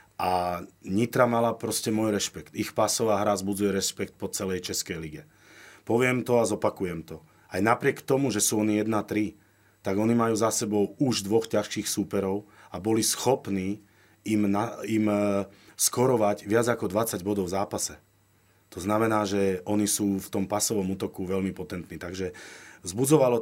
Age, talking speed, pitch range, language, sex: 40-59, 160 wpm, 95-110 Hz, Slovak, male